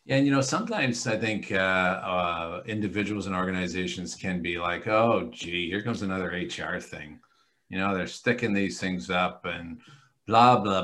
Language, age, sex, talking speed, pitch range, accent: English, 50-69, male, 170 wpm, 95-120 Hz, American